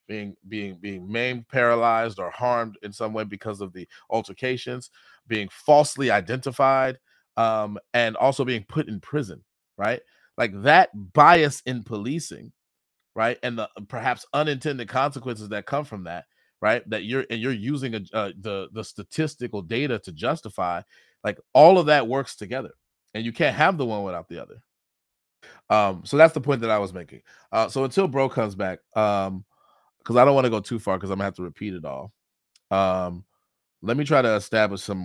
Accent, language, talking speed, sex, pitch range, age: American, English, 185 wpm, male, 95-125 Hz, 30-49